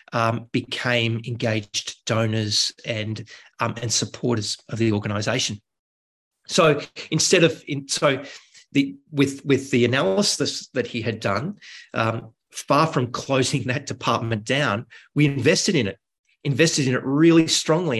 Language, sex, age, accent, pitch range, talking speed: English, male, 30-49, Australian, 115-145 Hz, 130 wpm